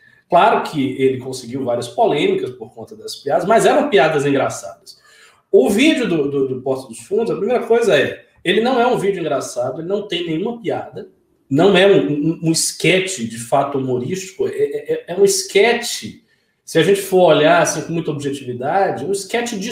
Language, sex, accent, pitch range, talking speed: Portuguese, male, Brazilian, 165-250 Hz, 190 wpm